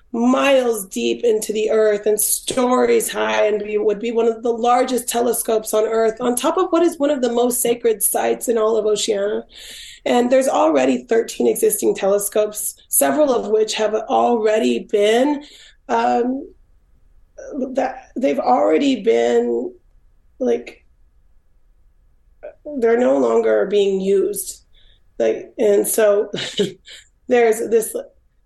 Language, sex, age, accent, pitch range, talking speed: English, female, 30-49, American, 200-240 Hz, 130 wpm